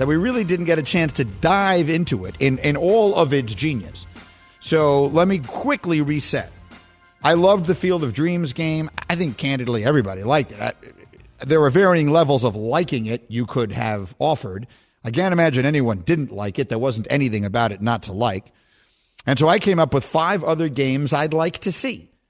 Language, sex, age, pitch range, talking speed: English, male, 50-69, 130-165 Hz, 200 wpm